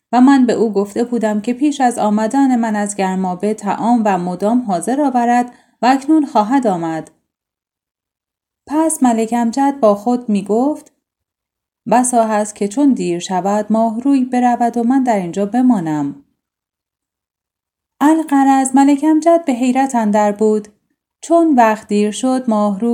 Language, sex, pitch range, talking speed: Persian, female, 215-280 Hz, 145 wpm